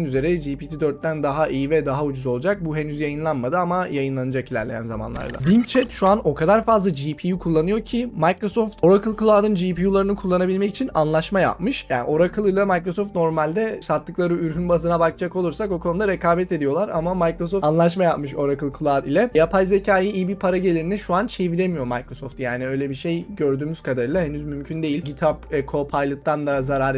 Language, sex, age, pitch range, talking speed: Turkish, male, 20-39, 145-185 Hz, 170 wpm